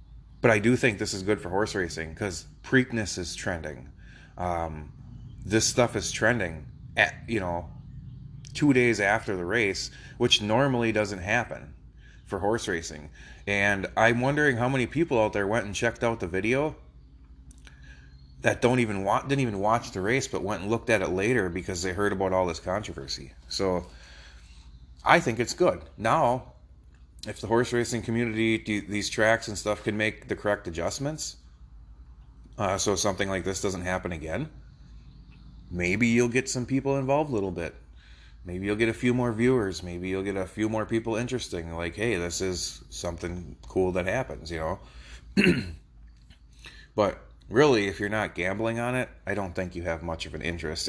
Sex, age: male, 30-49